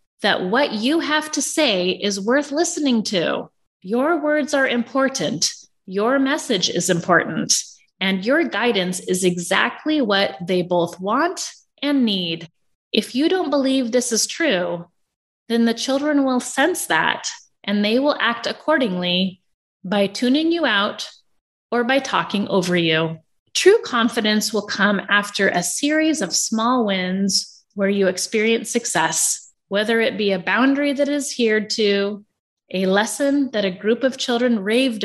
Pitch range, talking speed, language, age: 190-275 Hz, 150 wpm, English, 30-49